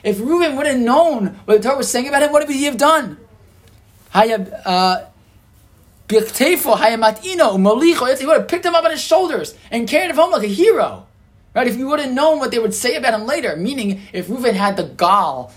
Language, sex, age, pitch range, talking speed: English, male, 20-39, 130-210 Hz, 200 wpm